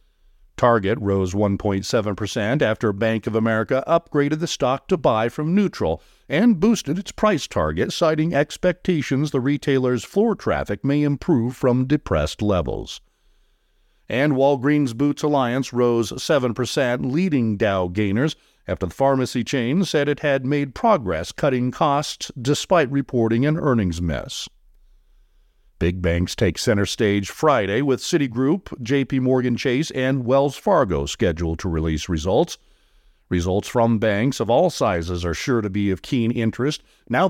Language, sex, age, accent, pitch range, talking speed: English, male, 50-69, American, 105-145 Hz, 140 wpm